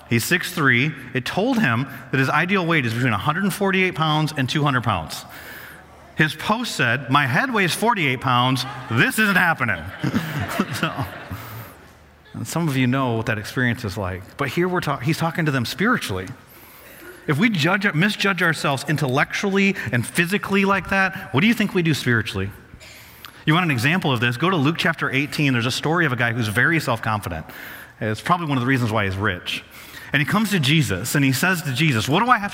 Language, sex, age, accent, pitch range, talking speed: English, male, 30-49, American, 125-180 Hz, 195 wpm